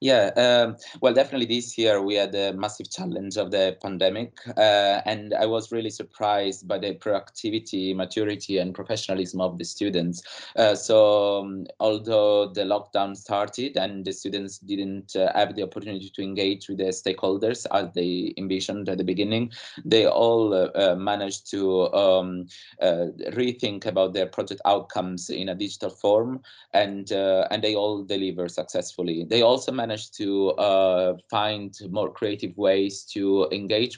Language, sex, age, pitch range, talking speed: English, male, 20-39, 95-110 Hz, 155 wpm